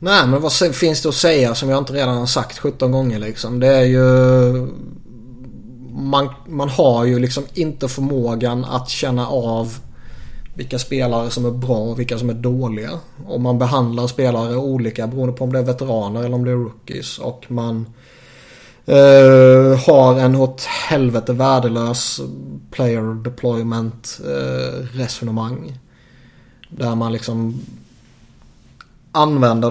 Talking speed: 145 wpm